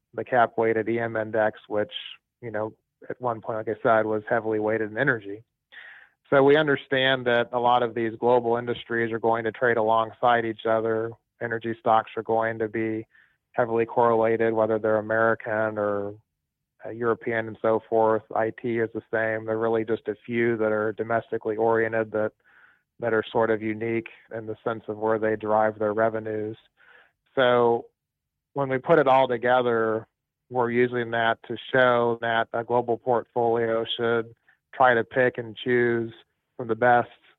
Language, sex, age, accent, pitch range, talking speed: English, male, 30-49, American, 110-120 Hz, 170 wpm